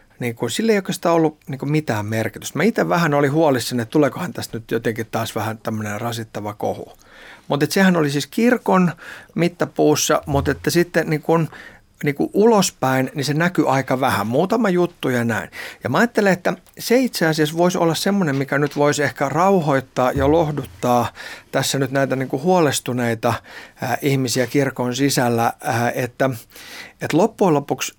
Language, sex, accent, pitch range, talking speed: Finnish, male, native, 120-160 Hz, 165 wpm